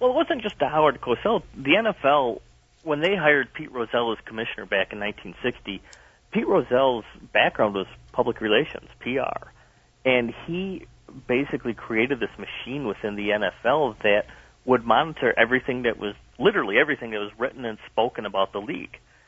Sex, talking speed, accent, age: male, 160 wpm, American, 40-59